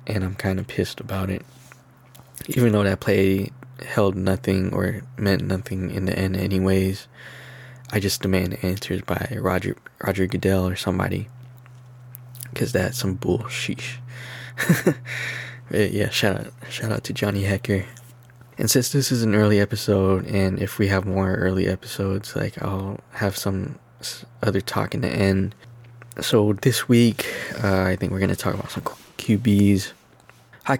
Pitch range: 95-120 Hz